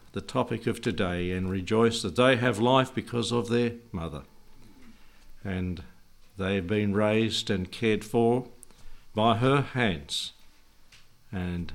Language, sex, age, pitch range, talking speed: English, male, 60-79, 100-120 Hz, 135 wpm